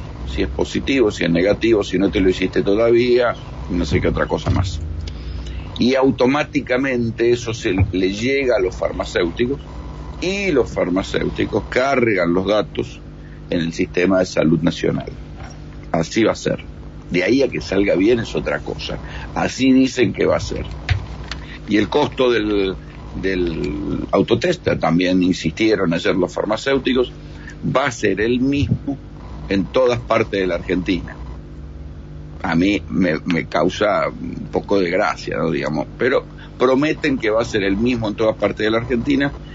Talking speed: 160 wpm